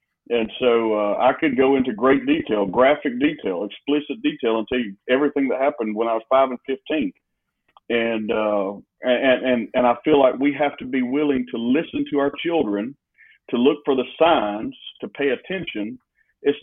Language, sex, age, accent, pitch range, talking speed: English, male, 50-69, American, 130-185 Hz, 190 wpm